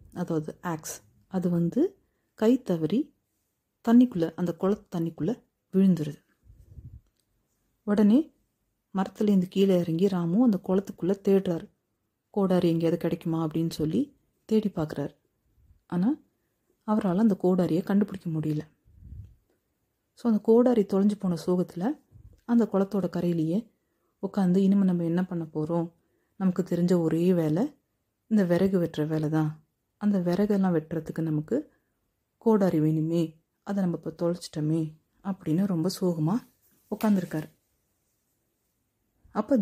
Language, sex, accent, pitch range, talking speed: Tamil, female, native, 165-210 Hz, 110 wpm